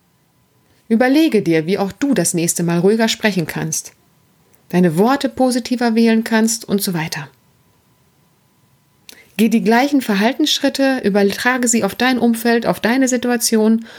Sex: female